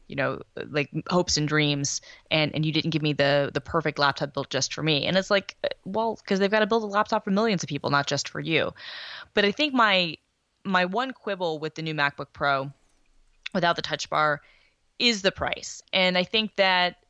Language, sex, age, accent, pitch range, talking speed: English, female, 20-39, American, 150-185 Hz, 220 wpm